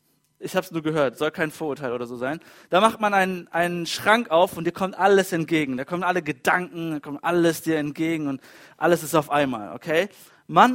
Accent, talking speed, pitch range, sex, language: German, 220 wpm, 150-185 Hz, male, German